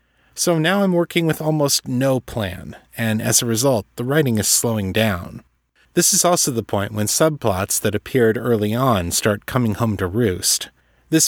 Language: English